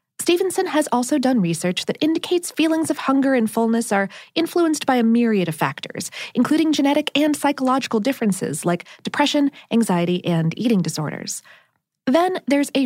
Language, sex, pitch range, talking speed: English, female, 210-300 Hz, 155 wpm